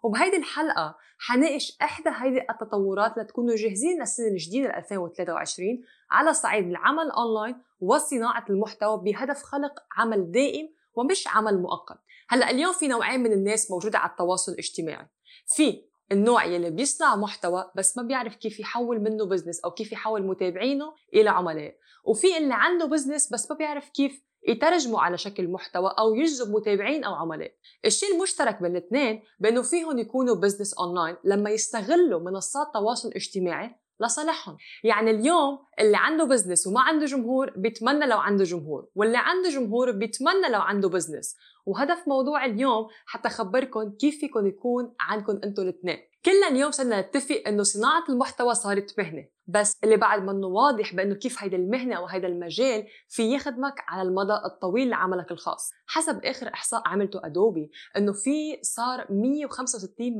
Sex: female